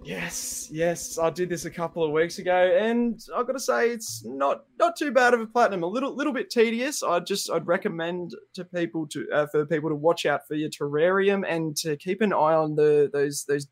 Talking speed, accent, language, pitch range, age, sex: 230 wpm, Australian, English, 145-180 Hz, 20-39, male